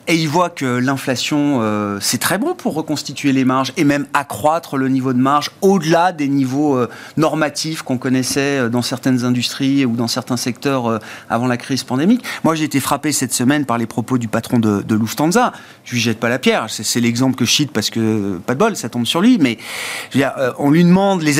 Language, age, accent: French, 30-49, French